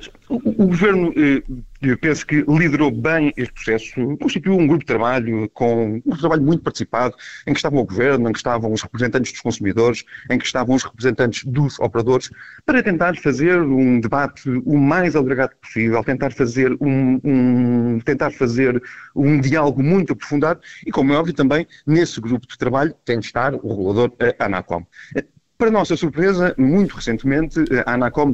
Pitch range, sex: 120-155 Hz, male